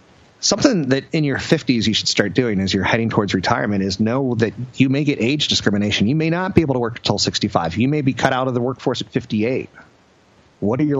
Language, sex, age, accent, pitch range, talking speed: English, male, 30-49, American, 115-155 Hz, 240 wpm